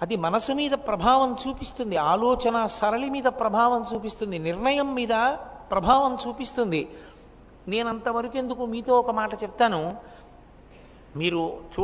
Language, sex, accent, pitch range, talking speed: English, male, Indian, 170-235 Hz, 85 wpm